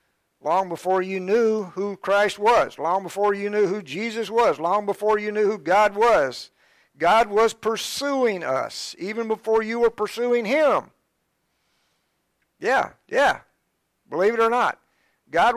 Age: 50-69